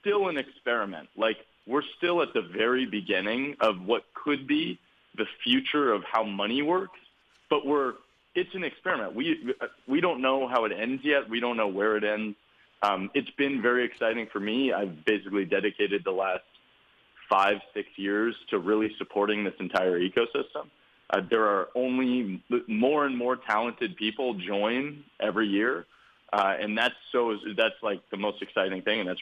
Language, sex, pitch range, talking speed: English, male, 100-145 Hz, 170 wpm